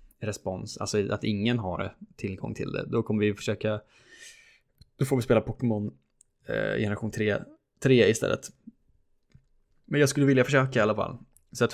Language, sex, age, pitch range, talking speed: Swedish, male, 20-39, 105-130 Hz, 160 wpm